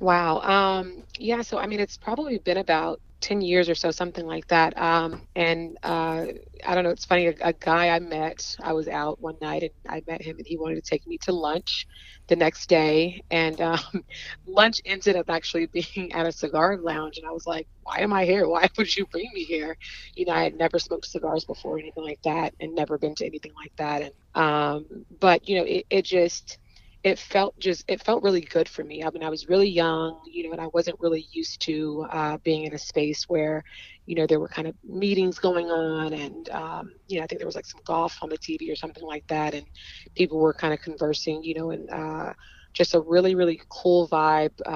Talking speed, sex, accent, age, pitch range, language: 235 wpm, female, American, 30-49, 155-180 Hz, English